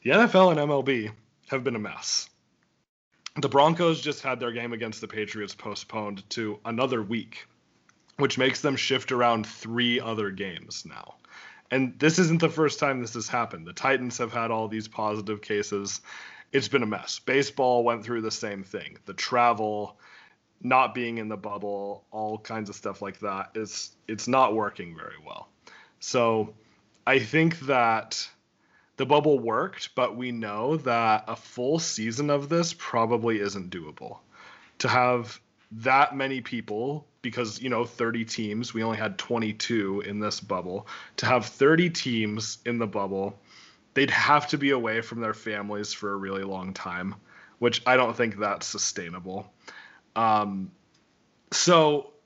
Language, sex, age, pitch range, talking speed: English, male, 30-49, 105-130 Hz, 160 wpm